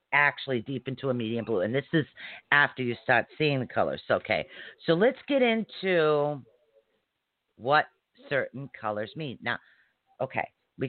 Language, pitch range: English, 120-175 Hz